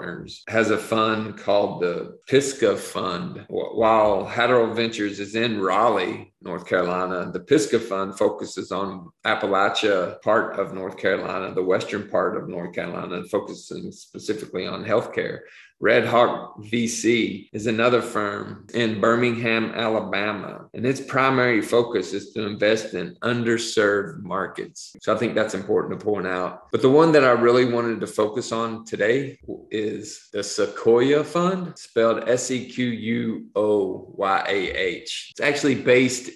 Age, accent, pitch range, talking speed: 40-59, American, 105-120 Hz, 135 wpm